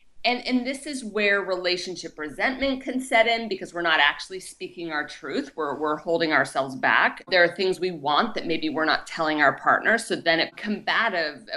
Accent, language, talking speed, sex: American, English, 195 wpm, female